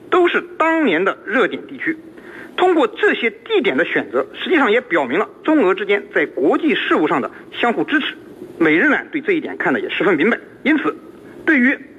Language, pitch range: Chinese, 315-380 Hz